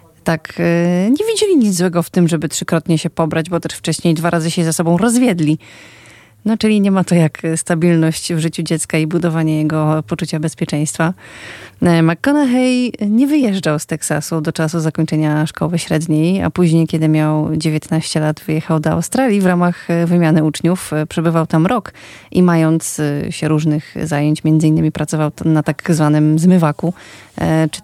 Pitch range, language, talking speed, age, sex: 155-180 Hz, Polish, 160 wpm, 30-49, female